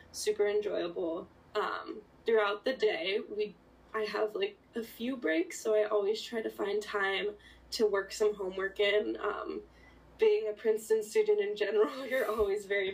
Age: 10-29